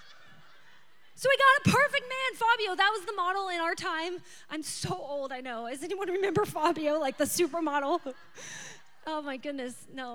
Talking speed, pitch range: 175 wpm, 275-405 Hz